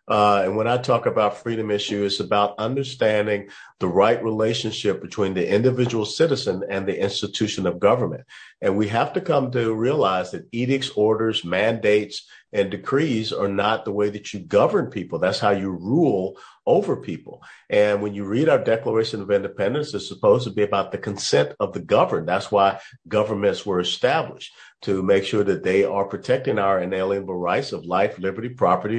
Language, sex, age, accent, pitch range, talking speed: English, male, 50-69, American, 100-115 Hz, 180 wpm